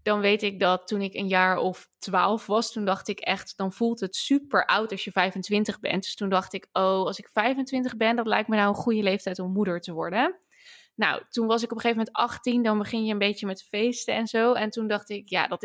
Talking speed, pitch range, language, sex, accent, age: 260 wpm, 195-230 Hz, Dutch, female, Dutch, 20-39